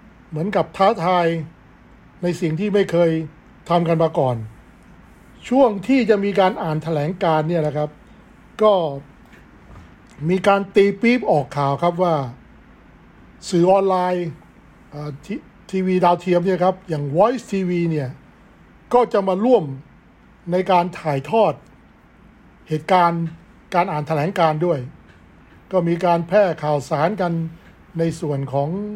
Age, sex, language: 60-79, male, English